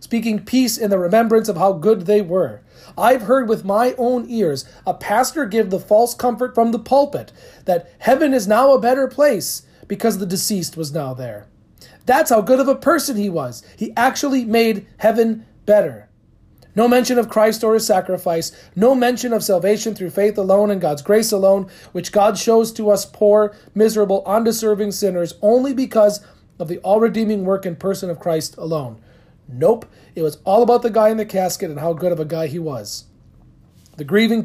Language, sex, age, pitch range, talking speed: English, male, 40-59, 165-220 Hz, 190 wpm